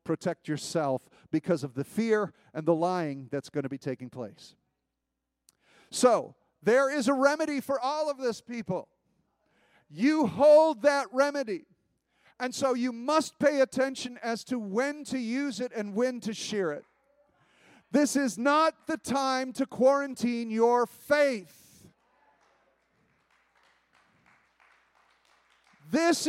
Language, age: English, 40-59